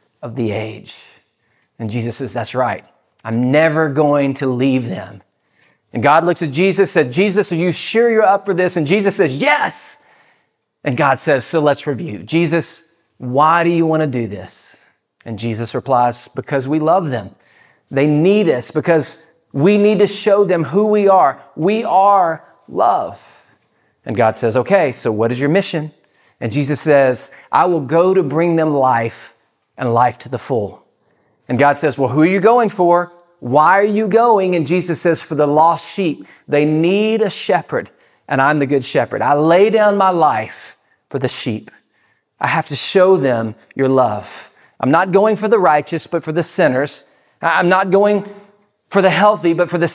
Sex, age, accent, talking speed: male, 40-59, American, 185 wpm